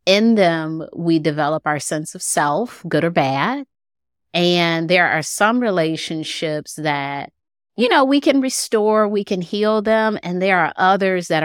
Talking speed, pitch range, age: 160 wpm, 150-180 Hz, 30-49